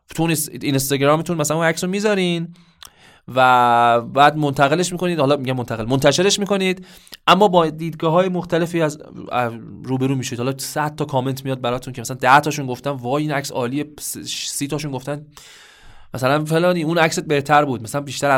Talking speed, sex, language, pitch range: 155 wpm, male, Arabic, 125-170 Hz